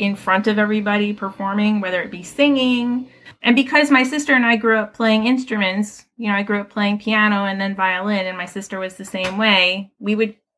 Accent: American